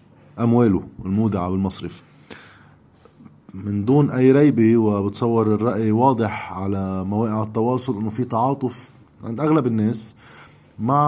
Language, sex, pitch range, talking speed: Arabic, male, 110-145 Hz, 110 wpm